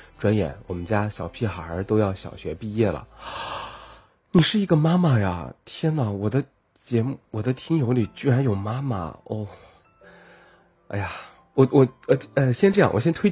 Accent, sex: native, male